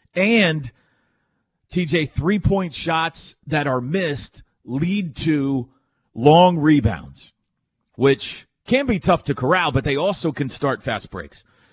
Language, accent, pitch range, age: English, American, 110-155 Hz, 40-59